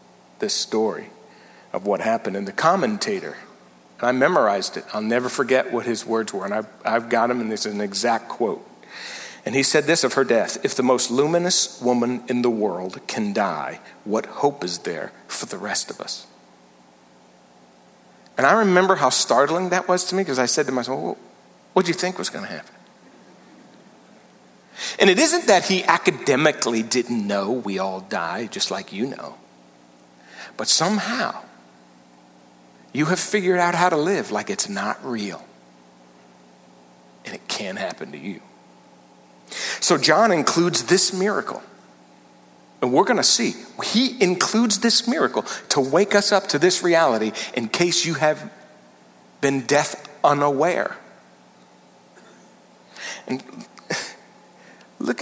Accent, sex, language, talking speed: American, male, English, 155 wpm